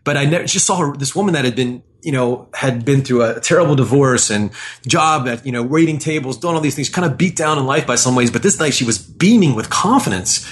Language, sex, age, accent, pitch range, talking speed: English, male, 30-49, American, 120-150 Hz, 255 wpm